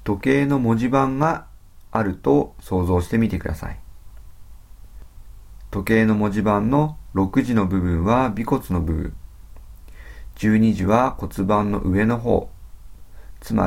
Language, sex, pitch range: Japanese, male, 85-110 Hz